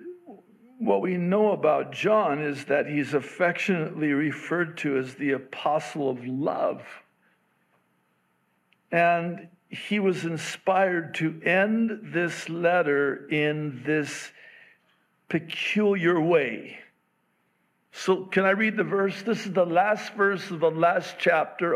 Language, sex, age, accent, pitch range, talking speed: English, male, 60-79, American, 160-205 Hz, 120 wpm